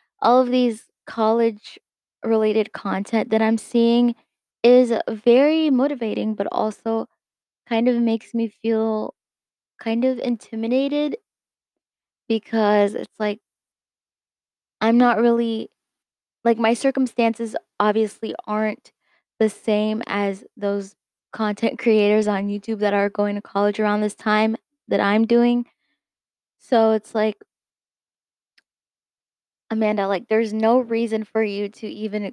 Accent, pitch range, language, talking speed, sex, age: American, 210-240 Hz, English, 120 wpm, female, 10-29